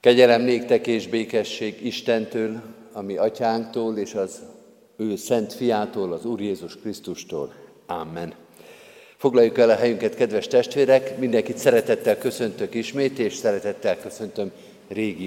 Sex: male